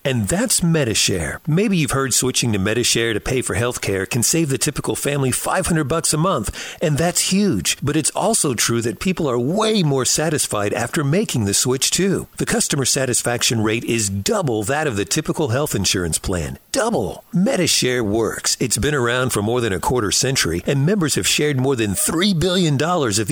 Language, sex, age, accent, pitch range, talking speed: English, male, 50-69, American, 120-175 Hz, 195 wpm